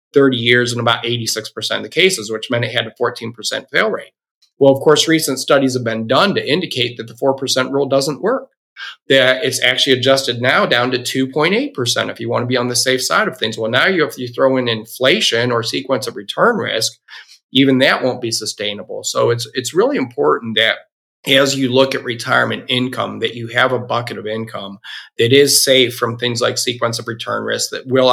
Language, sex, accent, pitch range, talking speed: English, male, American, 115-135 Hz, 225 wpm